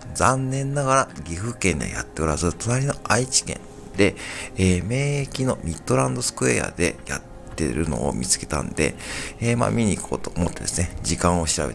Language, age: Japanese, 50-69